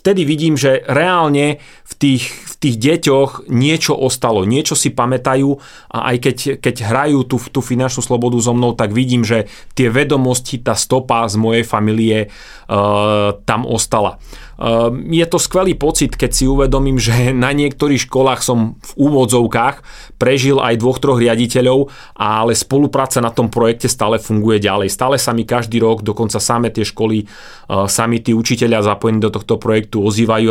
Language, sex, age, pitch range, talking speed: Slovak, male, 30-49, 110-130 Hz, 155 wpm